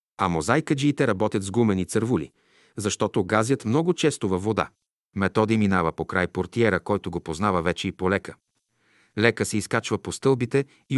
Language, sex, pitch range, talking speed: Bulgarian, male, 95-125 Hz, 165 wpm